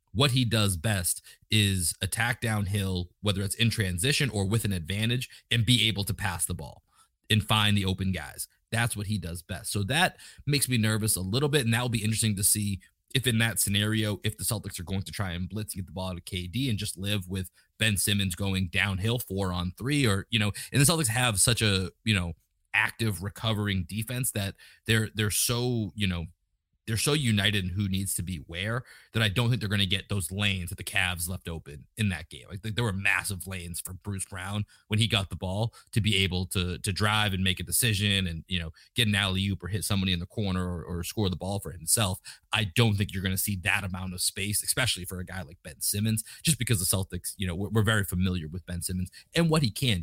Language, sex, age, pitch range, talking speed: English, male, 30-49, 95-110 Hz, 240 wpm